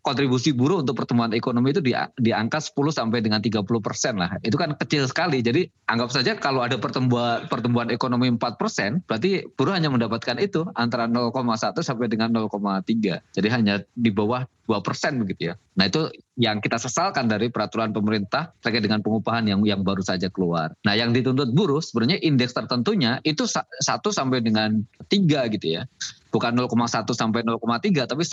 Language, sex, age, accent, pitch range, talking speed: Indonesian, male, 20-39, native, 110-130 Hz, 175 wpm